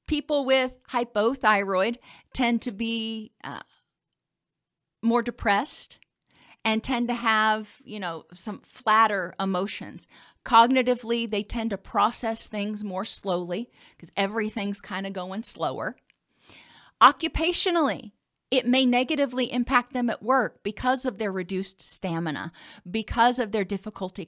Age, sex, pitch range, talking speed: 40-59, female, 195-250 Hz, 120 wpm